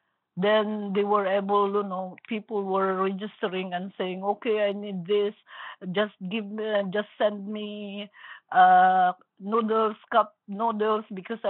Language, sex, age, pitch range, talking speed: English, female, 50-69, 190-260 Hz, 135 wpm